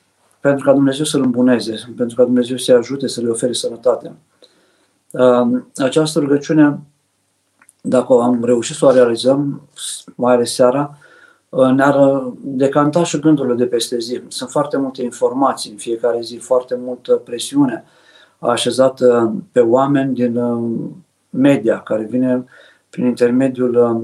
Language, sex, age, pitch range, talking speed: Romanian, male, 50-69, 120-140 Hz, 130 wpm